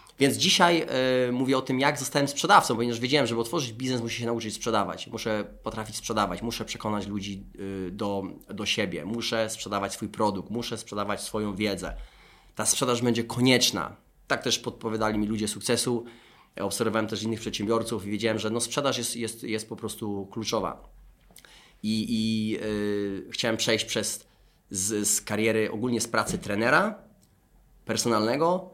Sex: male